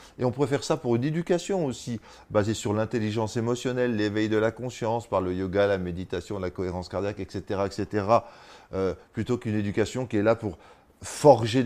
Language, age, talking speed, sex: French, 30-49, 185 wpm, male